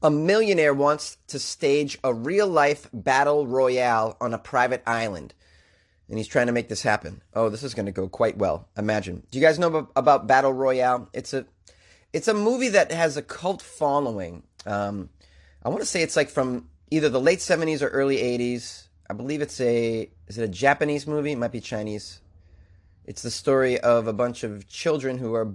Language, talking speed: English, 195 wpm